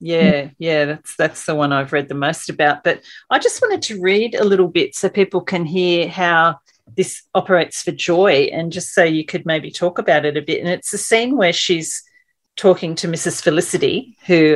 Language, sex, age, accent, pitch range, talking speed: English, female, 40-59, Australian, 155-195 Hz, 210 wpm